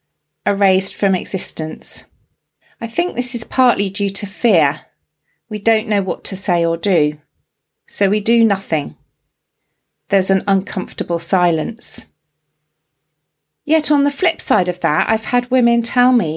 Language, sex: English, female